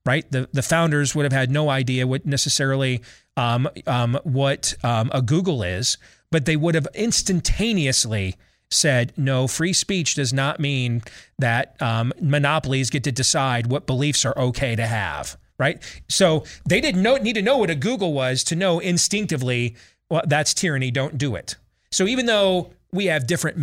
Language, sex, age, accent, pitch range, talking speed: English, male, 30-49, American, 115-160 Hz, 175 wpm